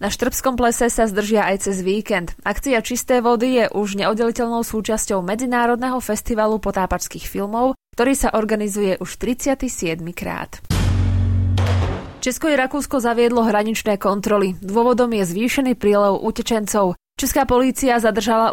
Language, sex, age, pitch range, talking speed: Slovak, female, 20-39, 190-235 Hz, 125 wpm